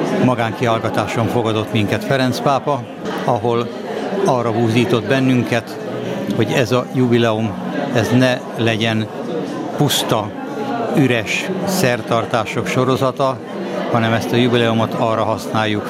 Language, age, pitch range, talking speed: Hungarian, 60-79, 115-130 Hz, 100 wpm